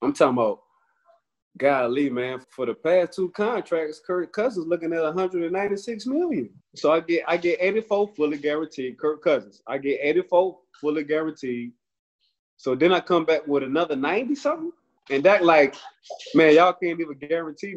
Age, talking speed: 20-39, 160 wpm